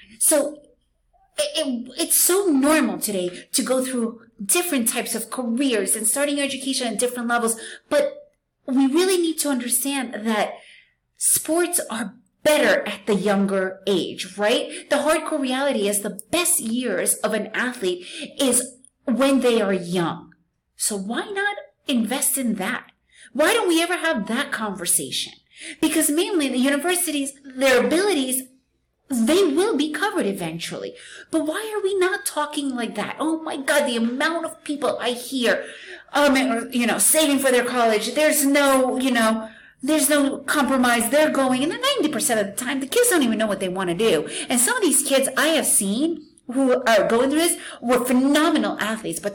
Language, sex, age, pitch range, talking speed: English, female, 30-49, 230-305 Hz, 165 wpm